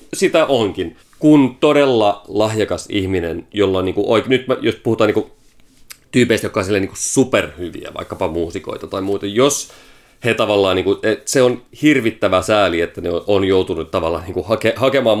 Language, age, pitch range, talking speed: Finnish, 30-49, 95-120 Hz, 160 wpm